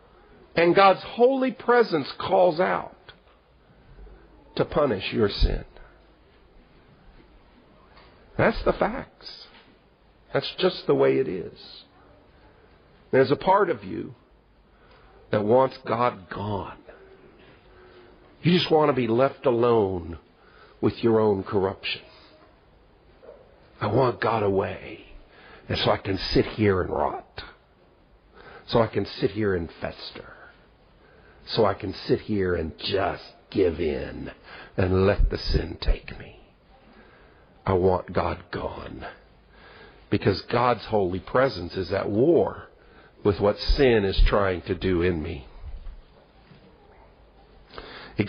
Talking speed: 115 wpm